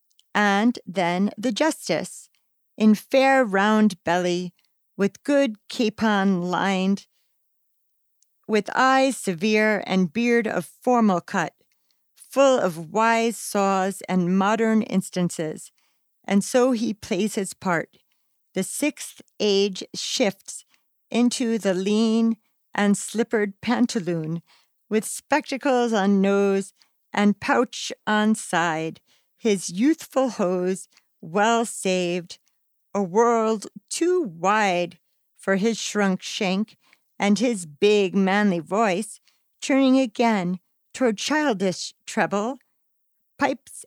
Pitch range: 190-235 Hz